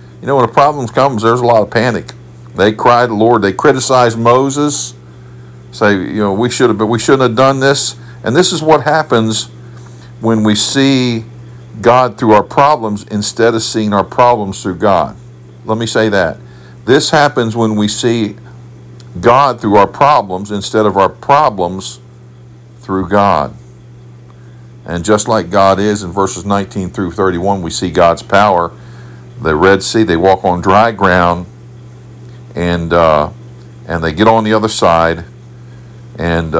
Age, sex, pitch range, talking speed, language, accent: 50-69, male, 85-115 Hz, 165 wpm, English, American